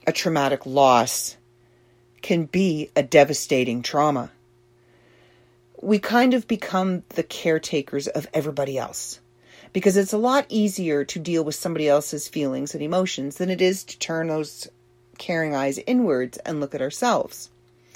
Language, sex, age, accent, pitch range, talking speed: English, female, 40-59, American, 120-175 Hz, 145 wpm